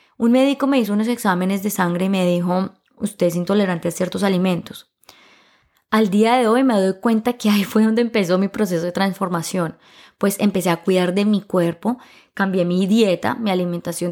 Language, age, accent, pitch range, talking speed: Spanish, 20-39, Colombian, 175-210 Hz, 190 wpm